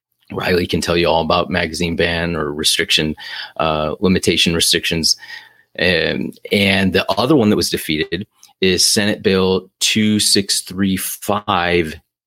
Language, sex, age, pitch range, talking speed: English, male, 30-49, 85-100 Hz, 120 wpm